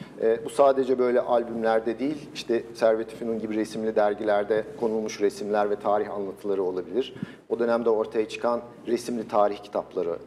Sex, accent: male, native